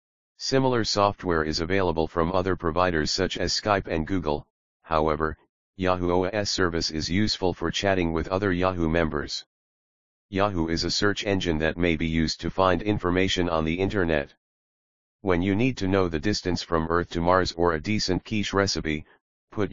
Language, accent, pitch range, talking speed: English, American, 80-100 Hz, 170 wpm